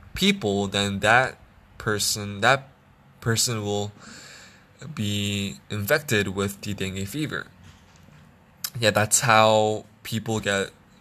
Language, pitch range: English, 100-120 Hz